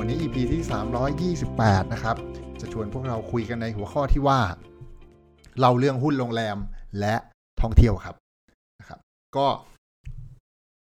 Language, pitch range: Thai, 100-130 Hz